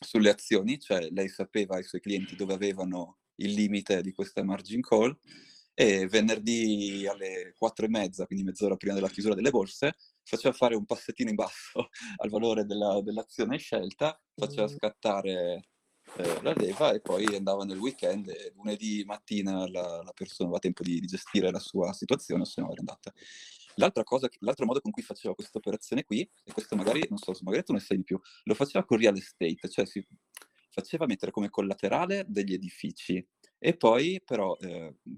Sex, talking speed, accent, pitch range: male, 185 wpm, native, 95-110 Hz